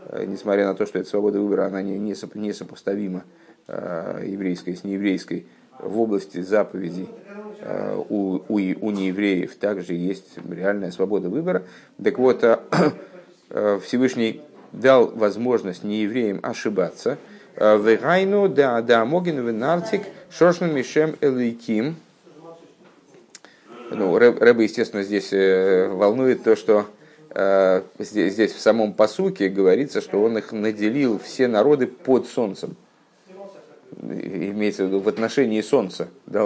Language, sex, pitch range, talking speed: Russian, male, 100-155 Hz, 110 wpm